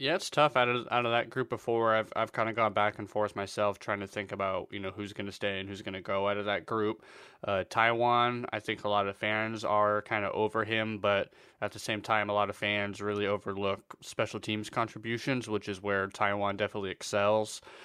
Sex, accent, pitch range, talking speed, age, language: male, American, 100-115 Hz, 225 wpm, 20-39, English